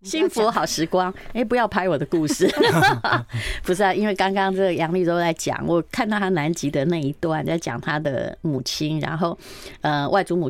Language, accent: Chinese, American